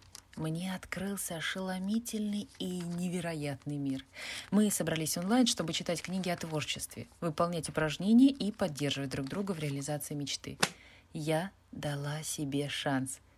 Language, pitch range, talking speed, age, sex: Russian, 155-210 Hz, 120 wpm, 20-39, female